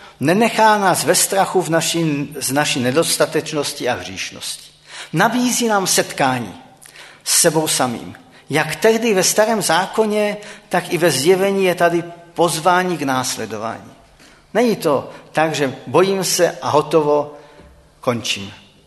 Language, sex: Czech, male